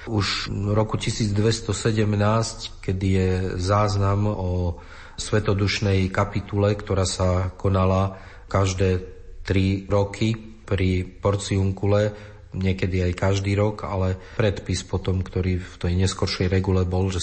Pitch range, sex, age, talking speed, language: 95-105 Hz, male, 40-59, 110 wpm, Slovak